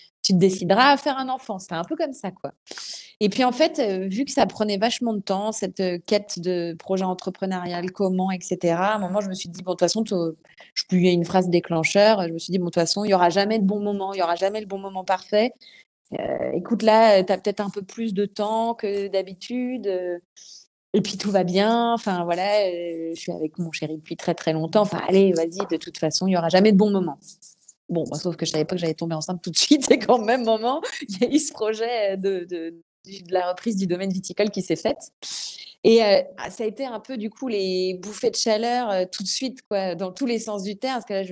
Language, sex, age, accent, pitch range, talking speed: French, female, 30-49, French, 180-220 Hz, 265 wpm